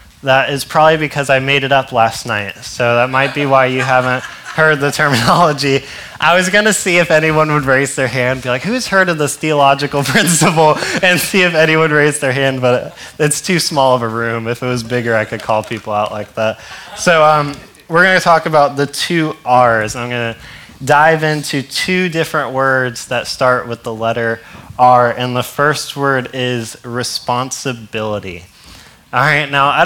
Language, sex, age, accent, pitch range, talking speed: English, male, 20-39, American, 125-155 Hz, 195 wpm